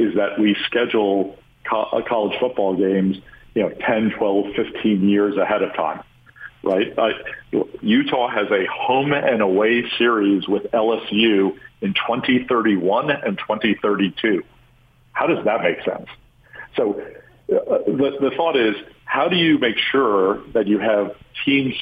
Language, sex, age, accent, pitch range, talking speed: English, male, 50-69, American, 95-110 Hz, 140 wpm